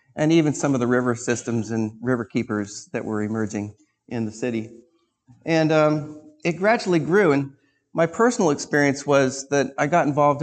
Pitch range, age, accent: 120-145 Hz, 40-59, American